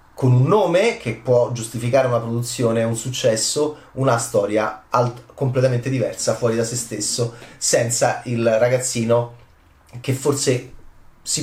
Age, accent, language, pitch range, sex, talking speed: 30-49, native, Italian, 115-130 Hz, male, 130 wpm